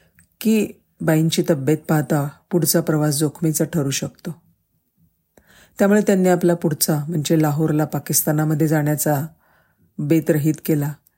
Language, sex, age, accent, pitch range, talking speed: Marathi, female, 50-69, native, 150-175 Hz, 100 wpm